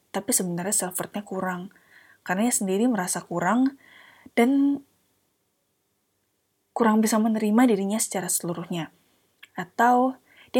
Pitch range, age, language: 175-220 Hz, 20-39, Indonesian